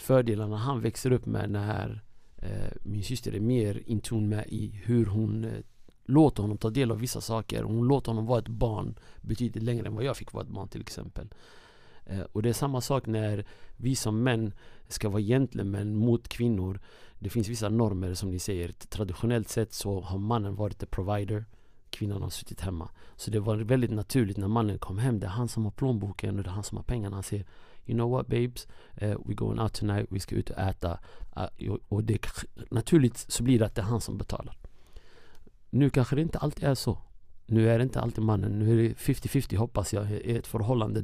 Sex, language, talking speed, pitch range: male, English, 215 wpm, 100-120 Hz